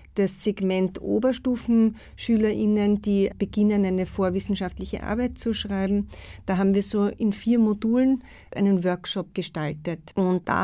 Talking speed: 125 wpm